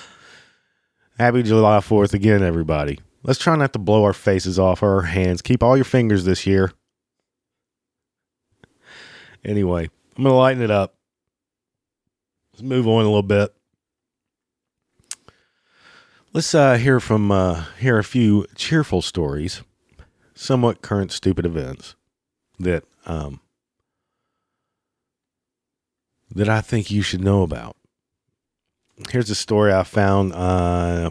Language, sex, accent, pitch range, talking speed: English, male, American, 95-120 Hz, 120 wpm